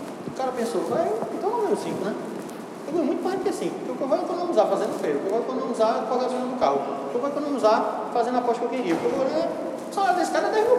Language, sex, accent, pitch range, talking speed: Portuguese, male, Brazilian, 210-275 Hz, 260 wpm